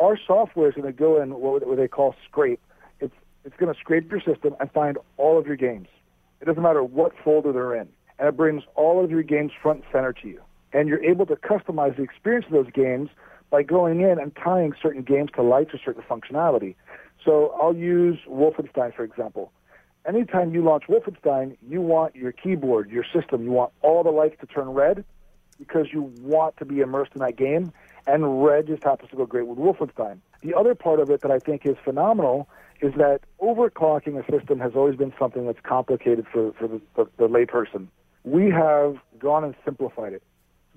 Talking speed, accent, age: 210 wpm, American, 40-59